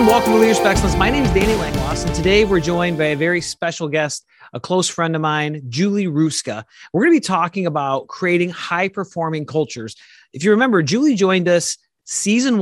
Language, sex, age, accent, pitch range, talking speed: English, male, 30-49, American, 140-180 Hz, 195 wpm